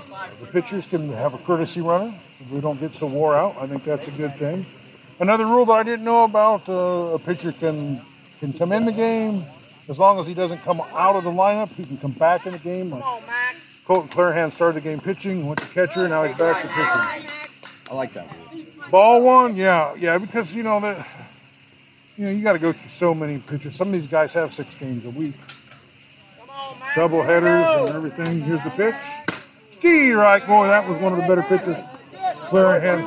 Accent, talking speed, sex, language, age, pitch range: American, 215 wpm, male, English, 50-69, 160-250 Hz